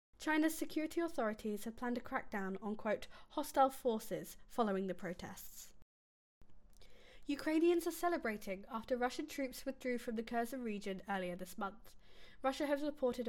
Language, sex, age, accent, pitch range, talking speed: English, female, 10-29, British, 200-265 Hz, 140 wpm